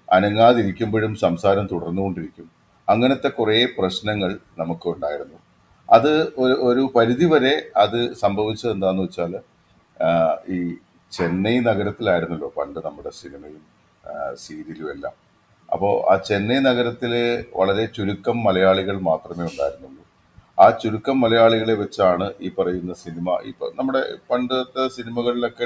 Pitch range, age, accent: 95-120 Hz, 40-59, native